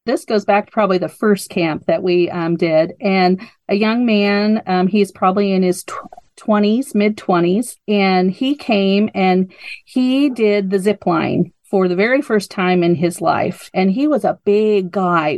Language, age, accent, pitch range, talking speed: English, 40-59, American, 185-220 Hz, 185 wpm